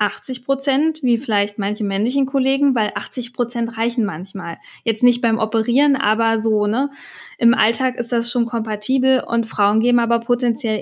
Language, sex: German, female